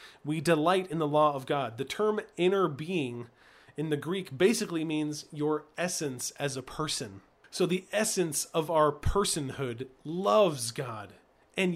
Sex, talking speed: male, 155 wpm